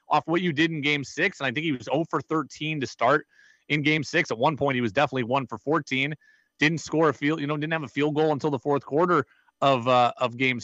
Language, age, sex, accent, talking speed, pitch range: English, 30-49, male, American, 270 wpm, 140-170 Hz